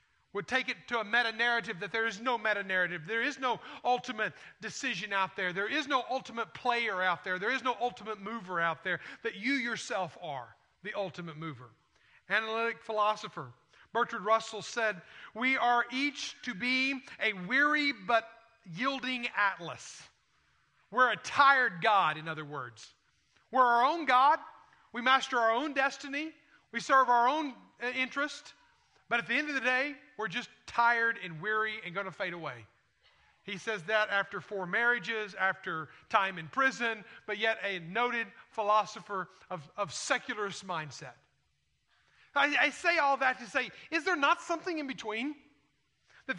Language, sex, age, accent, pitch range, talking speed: English, male, 40-59, American, 200-255 Hz, 160 wpm